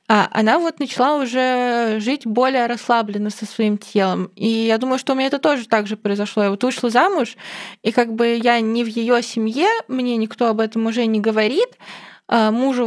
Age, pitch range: 20-39, 210-250 Hz